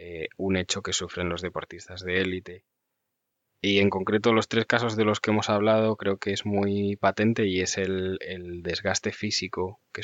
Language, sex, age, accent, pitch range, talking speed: English, male, 20-39, Spanish, 95-110 Hz, 185 wpm